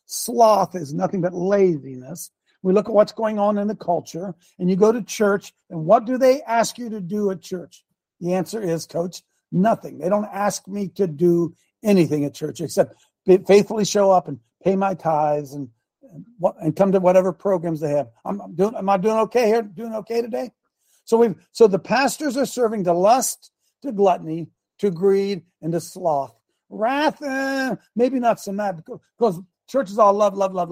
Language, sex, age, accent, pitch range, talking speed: English, male, 60-79, American, 170-225 Hz, 195 wpm